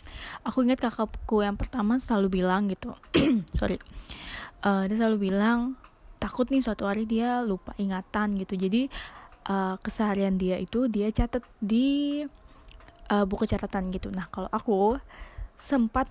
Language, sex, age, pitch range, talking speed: Indonesian, female, 10-29, 190-225 Hz, 150 wpm